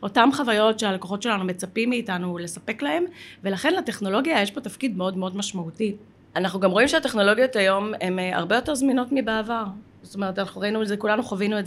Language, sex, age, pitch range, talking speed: Hebrew, female, 20-39, 195-240 Hz, 180 wpm